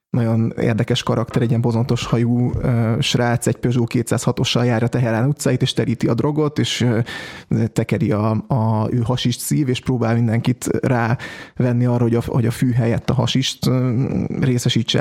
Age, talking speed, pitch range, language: 20-39, 160 wpm, 120-130 Hz, Hungarian